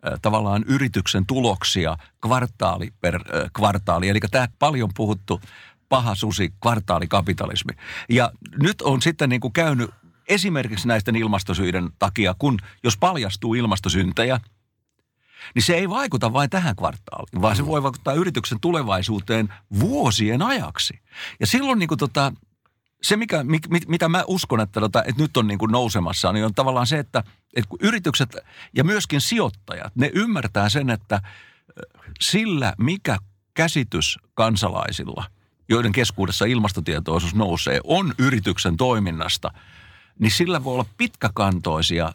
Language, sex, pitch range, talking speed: Finnish, male, 100-135 Hz, 120 wpm